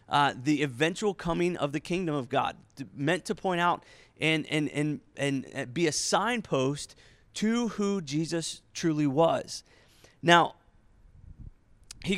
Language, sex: English, male